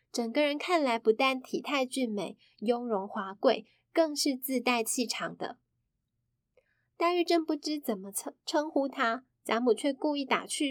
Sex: female